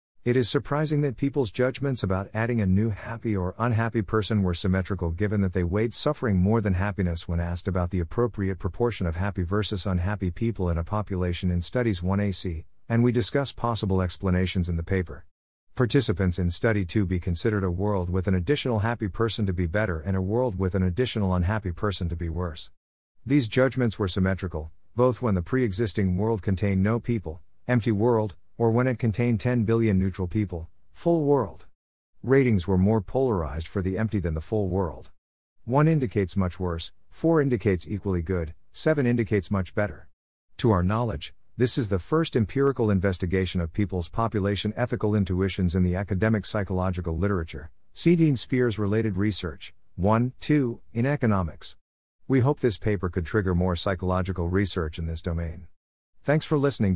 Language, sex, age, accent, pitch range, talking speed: English, male, 50-69, American, 90-115 Hz, 175 wpm